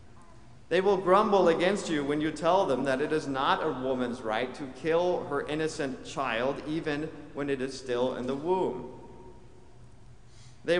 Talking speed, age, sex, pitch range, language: 165 wpm, 40-59, male, 125-160 Hz, English